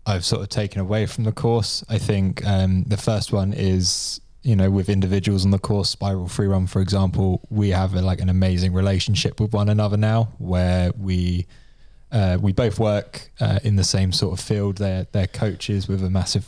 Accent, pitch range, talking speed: British, 95-110 Hz, 210 wpm